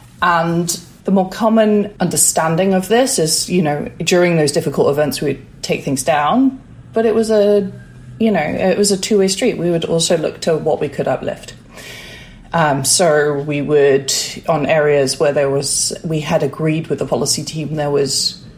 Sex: female